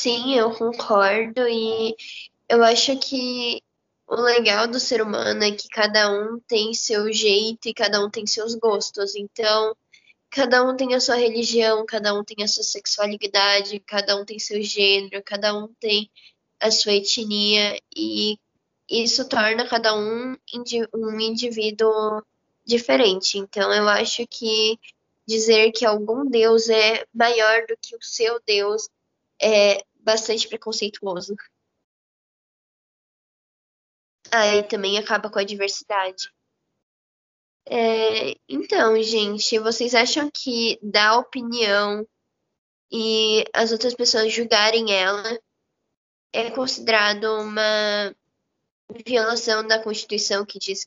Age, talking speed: 10-29, 125 wpm